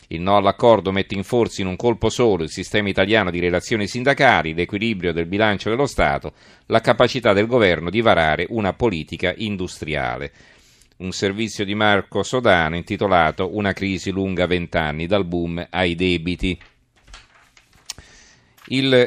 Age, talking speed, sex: 40-59, 140 wpm, male